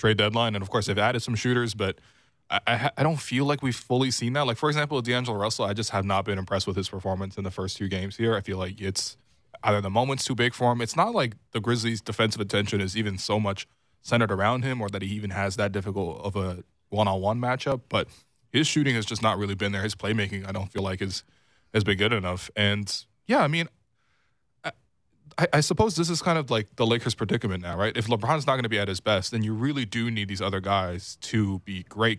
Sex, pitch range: male, 100-120 Hz